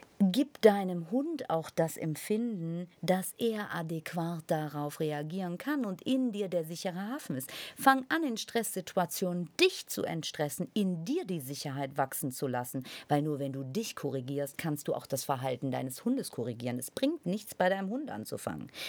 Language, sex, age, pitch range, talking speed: German, female, 50-69, 125-180 Hz, 170 wpm